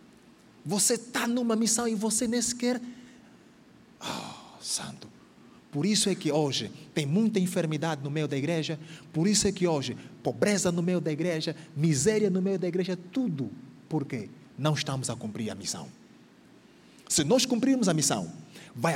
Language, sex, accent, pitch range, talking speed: Portuguese, male, Brazilian, 155-235 Hz, 160 wpm